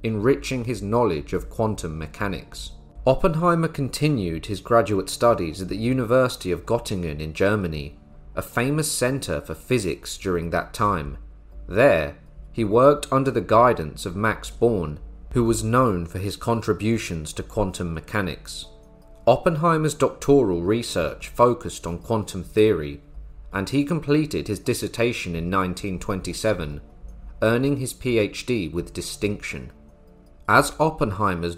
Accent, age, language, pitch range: British, 30-49, English, 80-115 Hz